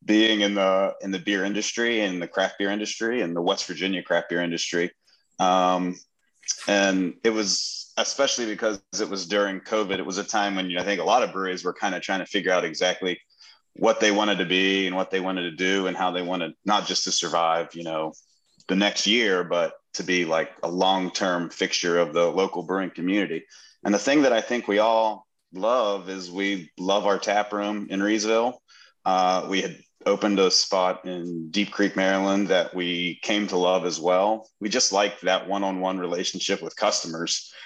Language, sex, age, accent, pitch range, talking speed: English, male, 30-49, American, 90-105 Hz, 200 wpm